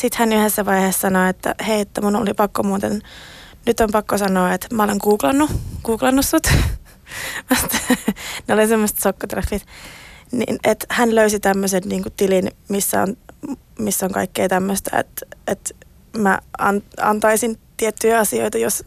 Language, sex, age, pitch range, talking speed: Finnish, female, 20-39, 195-225 Hz, 145 wpm